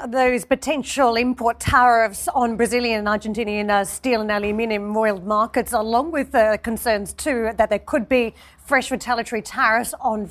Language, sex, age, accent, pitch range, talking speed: English, female, 30-49, Australian, 210-245 Hz, 165 wpm